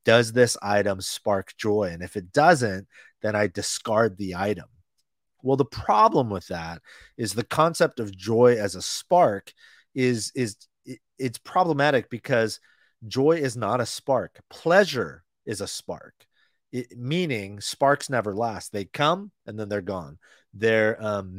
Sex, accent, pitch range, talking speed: male, American, 105-130 Hz, 150 wpm